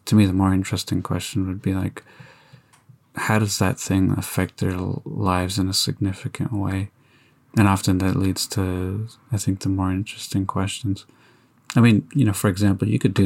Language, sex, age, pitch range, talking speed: English, male, 20-39, 95-120 Hz, 180 wpm